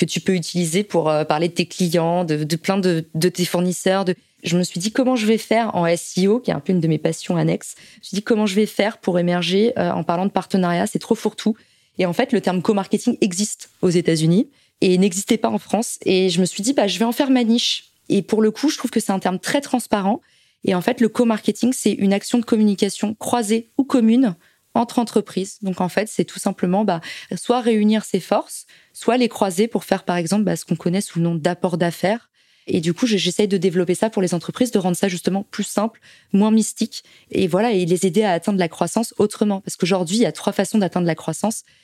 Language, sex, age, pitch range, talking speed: French, female, 20-39, 180-220 Hz, 245 wpm